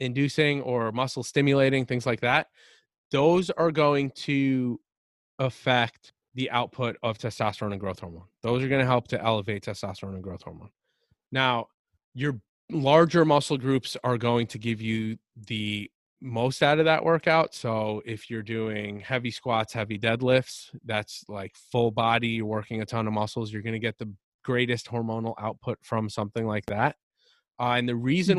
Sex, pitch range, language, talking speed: male, 110-135 Hz, English, 170 wpm